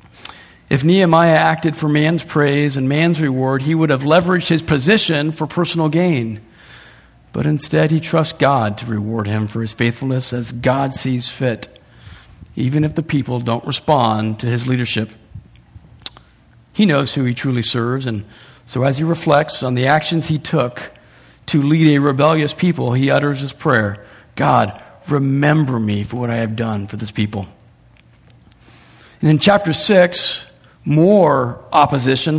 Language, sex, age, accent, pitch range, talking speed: English, male, 50-69, American, 125-175 Hz, 155 wpm